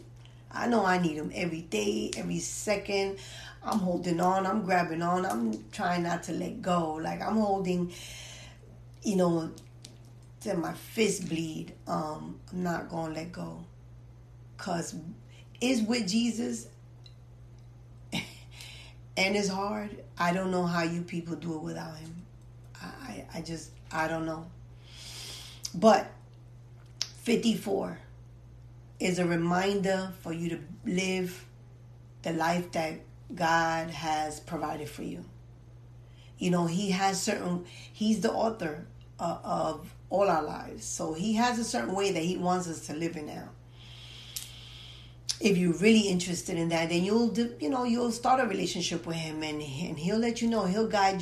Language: English